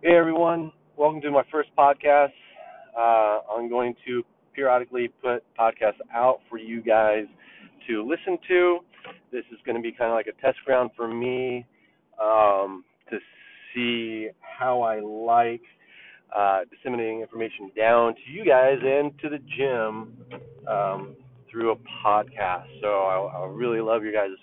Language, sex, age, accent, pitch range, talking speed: English, male, 30-49, American, 110-145 Hz, 155 wpm